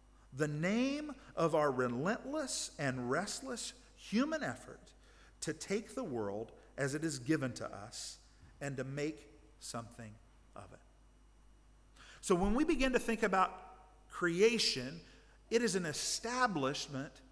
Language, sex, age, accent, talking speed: English, male, 50-69, American, 130 wpm